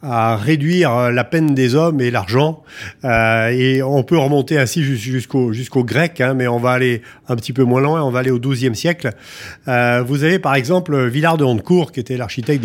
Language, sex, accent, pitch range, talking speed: French, male, French, 120-150 Hz, 210 wpm